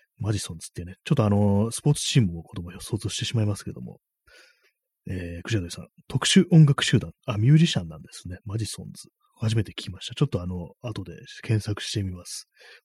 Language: Japanese